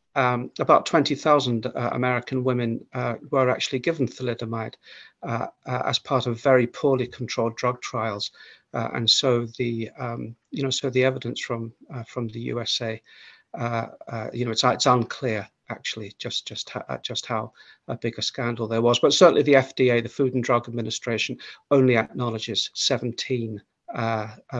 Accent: British